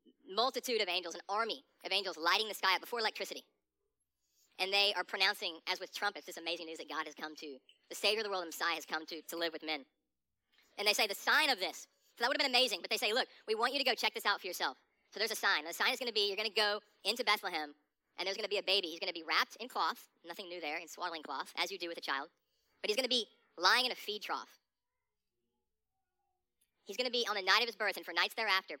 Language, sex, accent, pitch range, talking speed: English, male, American, 185-250 Hz, 280 wpm